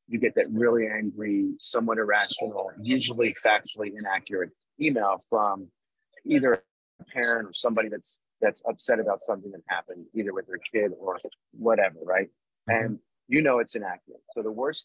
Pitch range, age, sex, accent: 105-145 Hz, 30-49, male, American